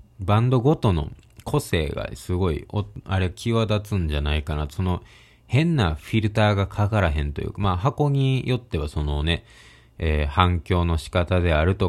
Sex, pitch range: male, 80-110 Hz